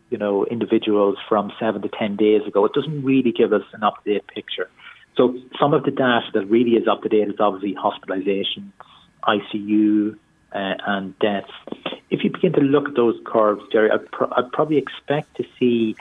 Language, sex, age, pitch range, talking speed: English, male, 30-49, 105-125 Hz, 180 wpm